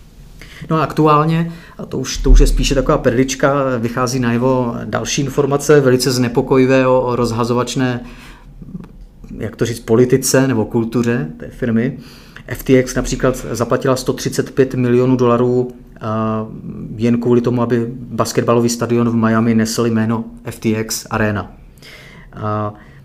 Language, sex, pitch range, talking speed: Czech, male, 115-135 Hz, 120 wpm